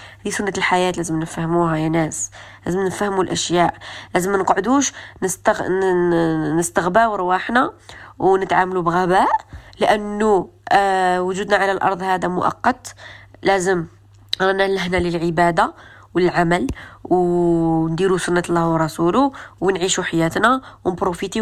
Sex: female